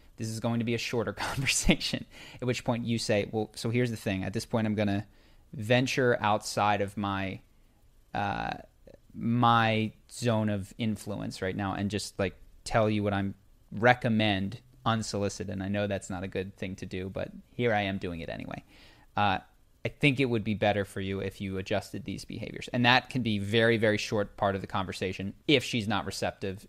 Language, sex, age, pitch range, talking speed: English, male, 20-39, 100-120 Hz, 200 wpm